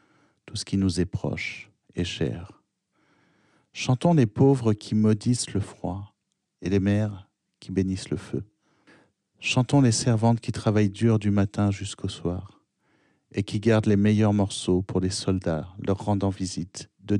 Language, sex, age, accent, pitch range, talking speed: French, male, 50-69, French, 95-110 Hz, 155 wpm